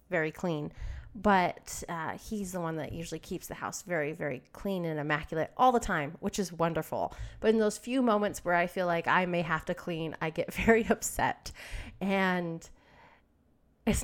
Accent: American